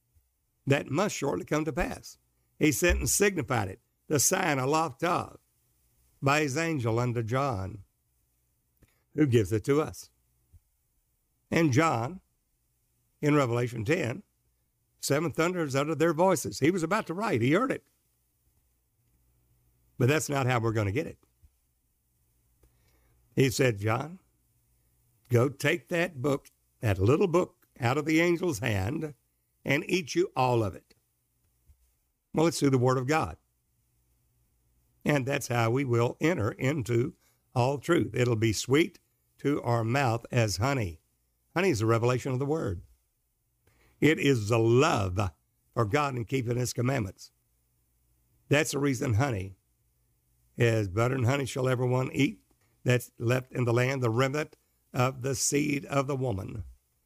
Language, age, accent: English, 60-79, American